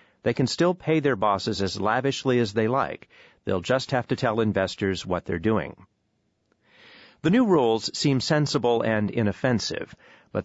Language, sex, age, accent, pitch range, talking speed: English, male, 40-59, American, 100-135 Hz, 160 wpm